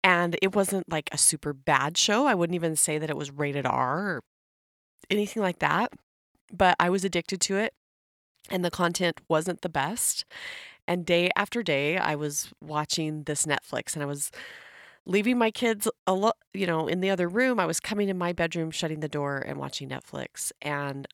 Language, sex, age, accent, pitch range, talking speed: English, female, 30-49, American, 145-180 Hz, 190 wpm